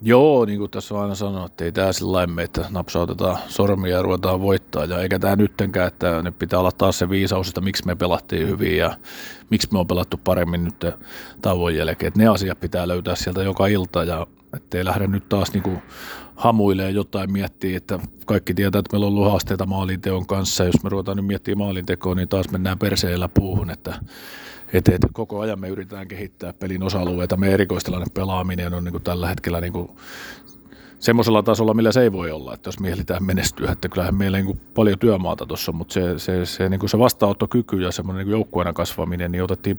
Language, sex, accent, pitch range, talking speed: Finnish, male, native, 90-105 Hz, 190 wpm